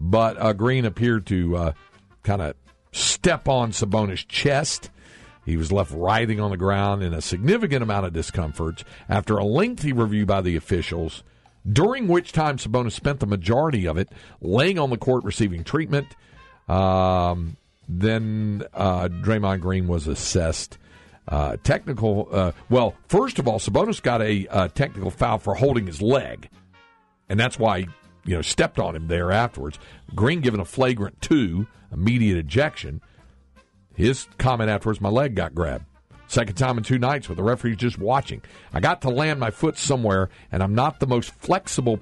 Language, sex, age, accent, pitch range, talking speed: English, male, 50-69, American, 95-125 Hz, 170 wpm